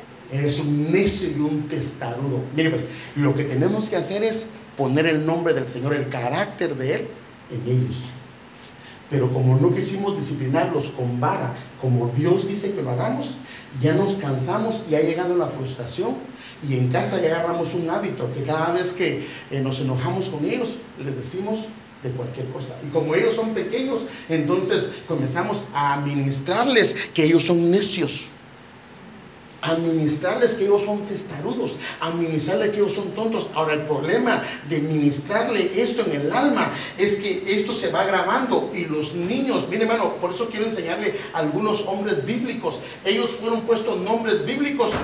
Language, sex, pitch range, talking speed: Spanish, male, 145-225 Hz, 165 wpm